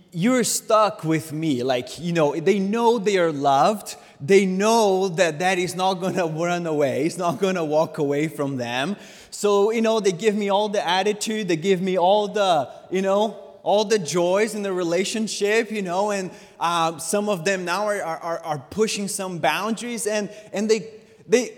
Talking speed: 195 wpm